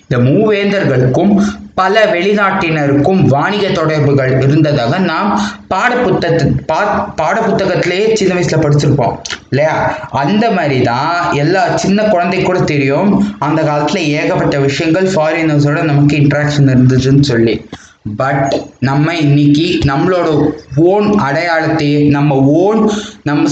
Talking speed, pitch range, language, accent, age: 90 wpm, 140-165 Hz, Tamil, native, 20-39